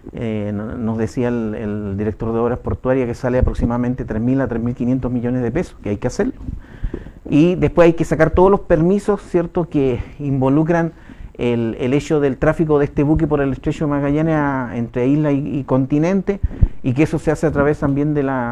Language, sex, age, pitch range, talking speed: Spanish, male, 50-69, 115-145 Hz, 200 wpm